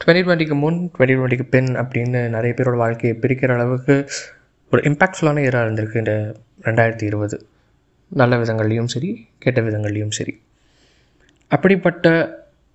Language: Tamil